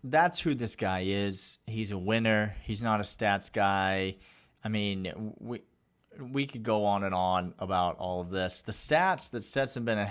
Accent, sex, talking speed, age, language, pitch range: American, male, 185 wpm, 40-59, English, 100-130 Hz